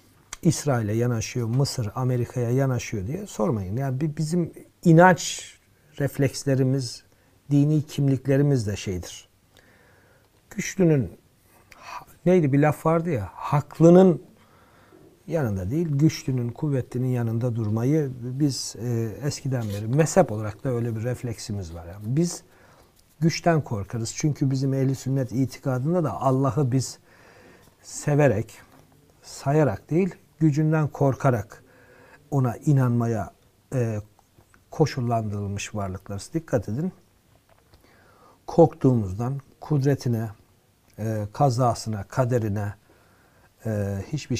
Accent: native